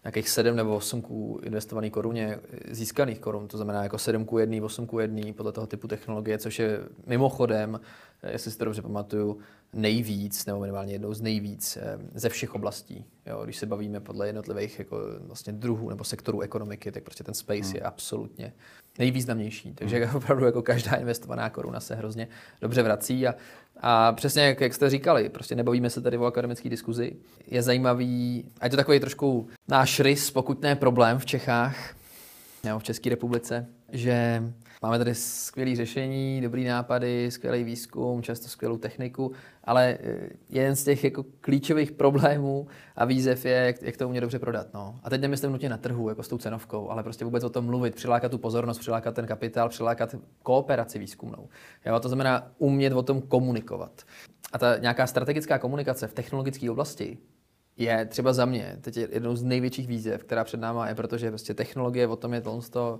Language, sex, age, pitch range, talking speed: Czech, male, 20-39, 110-125 Hz, 175 wpm